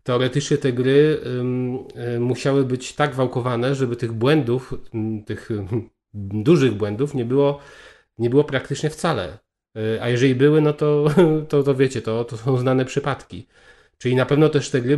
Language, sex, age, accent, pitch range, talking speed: Polish, male, 40-59, native, 115-140 Hz, 150 wpm